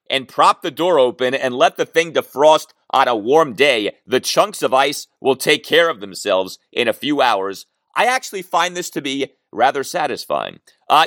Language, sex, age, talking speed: English, male, 40-59, 195 wpm